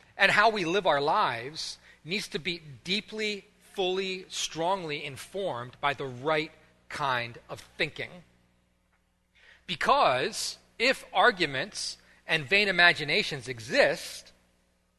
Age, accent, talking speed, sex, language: 40-59, American, 105 wpm, male, English